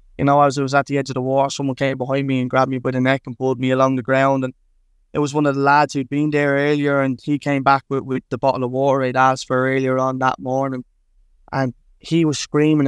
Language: English